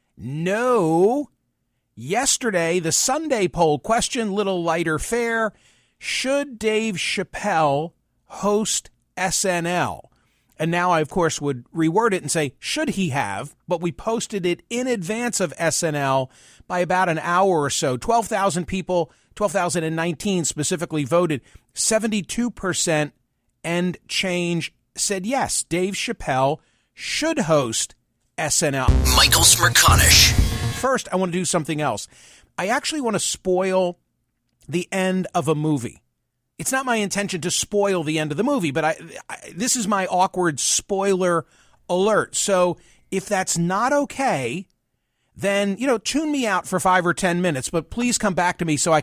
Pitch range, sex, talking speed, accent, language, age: 160-210 Hz, male, 145 wpm, American, English, 40-59